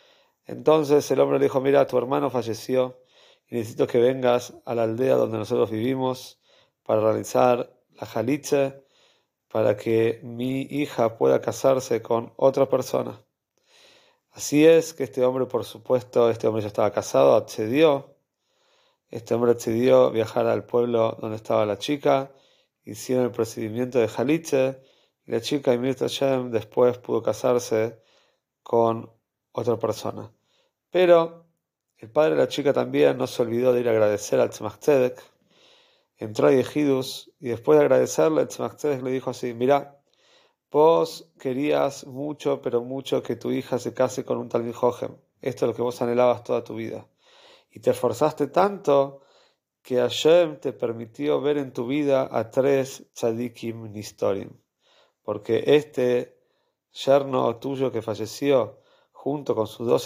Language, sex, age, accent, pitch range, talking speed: Spanish, male, 40-59, Argentinian, 115-145 Hz, 150 wpm